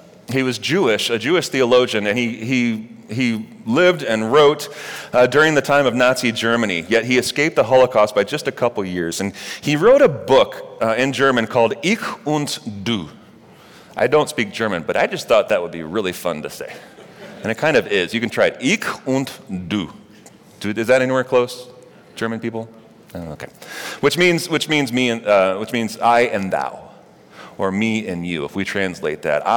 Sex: male